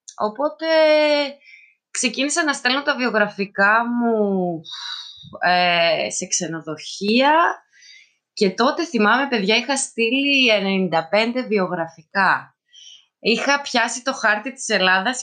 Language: Greek